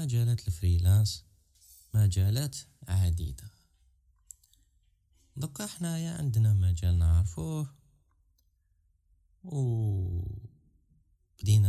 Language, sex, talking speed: Arabic, male, 50 wpm